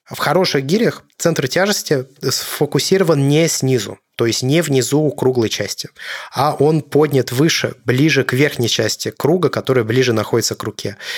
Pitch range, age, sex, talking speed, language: 115-135 Hz, 20-39, male, 155 wpm, Russian